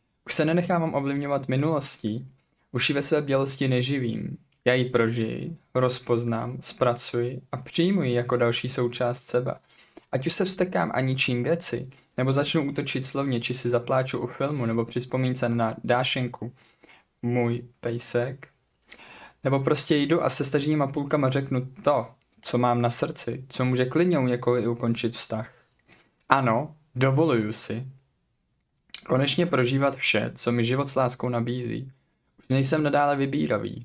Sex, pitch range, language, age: male, 120-140 Hz, Czech, 20-39